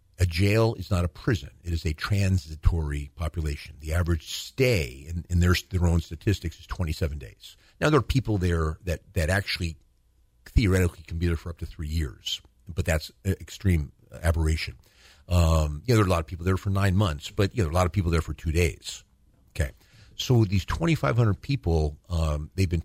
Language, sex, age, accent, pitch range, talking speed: English, male, 50-69, American, 80-105 Hz, 205 wpm